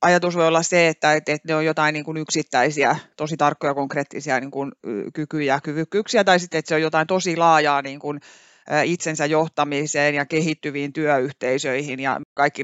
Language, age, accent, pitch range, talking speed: Finnish, 30-49, native, 145-180 Hz, 140 wpm